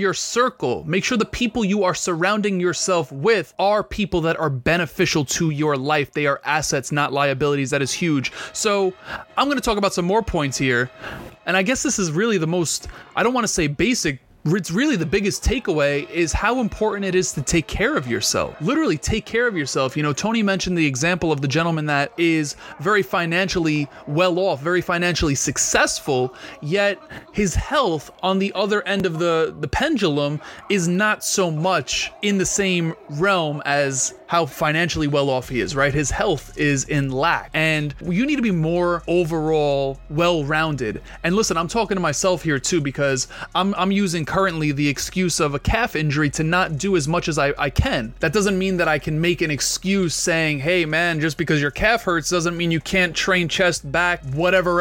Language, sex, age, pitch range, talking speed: English, male, 30-49, 150-185 Hz, 195 wpm